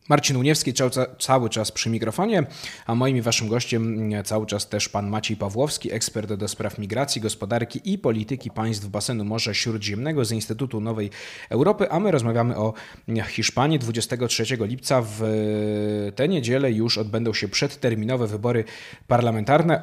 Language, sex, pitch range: Polish, male, 115-150 Hz